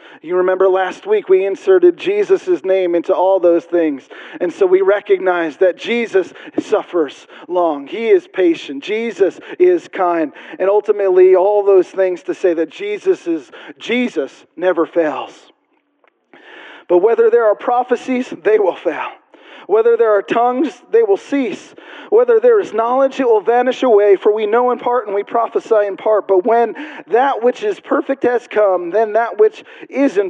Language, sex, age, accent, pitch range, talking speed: English, male, 40-59, American, 180-270 Hz, 165 wpm